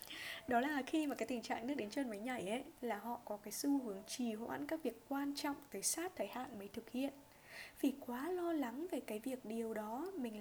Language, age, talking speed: Vietnamese, 10-29, 240 wpm